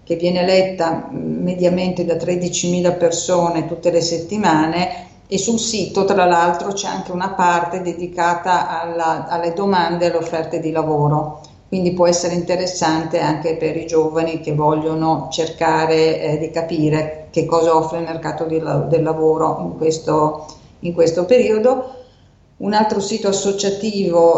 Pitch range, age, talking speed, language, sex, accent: 160-180 Hz, 50-69, 145 wpm, Italian, female, native